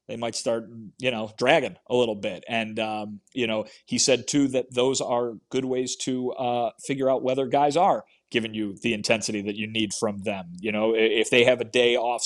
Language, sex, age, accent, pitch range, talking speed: English, male, 30-49, American, 115-130 Hz, 220 wpm